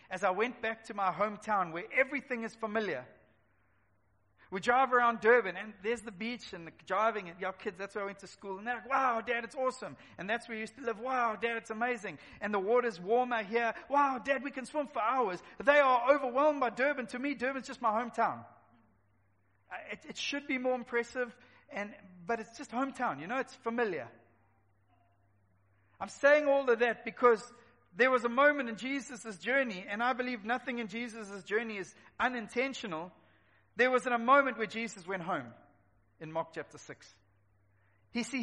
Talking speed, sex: 195 wpm, male